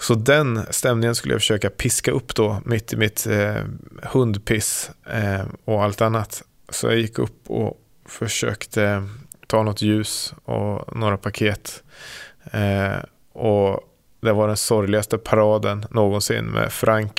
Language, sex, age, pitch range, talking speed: Swedish, male, 20-39, 105-120 Hz, 140 wpm